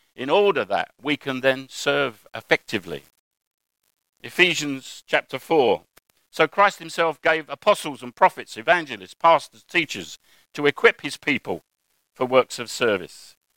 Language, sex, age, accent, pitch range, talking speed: English, male, 50-69, British, 125-165 Hz, 130 wpm